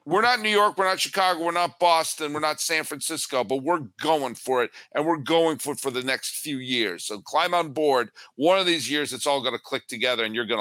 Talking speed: 260 wpm